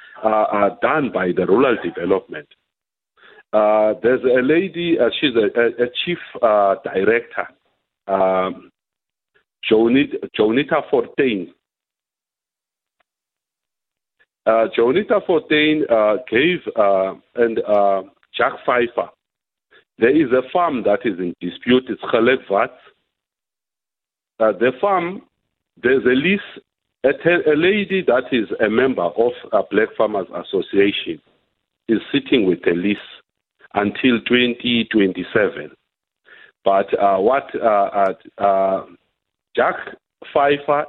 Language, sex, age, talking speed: English, male, 50-69, 105 wpm